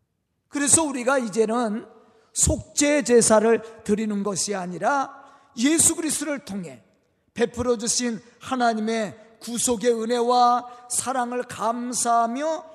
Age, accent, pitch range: 40-59, native, 215-285 Hz